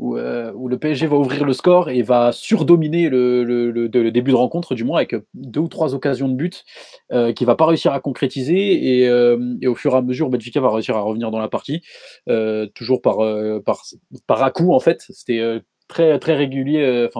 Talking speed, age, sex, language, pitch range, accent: 235 wpm, 20-39, male, French, 115-145 Hz, French